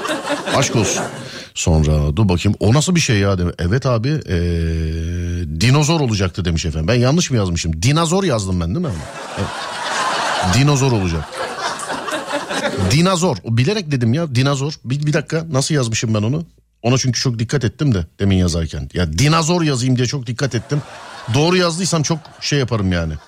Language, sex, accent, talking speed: Turkish, male, native, 160 wpm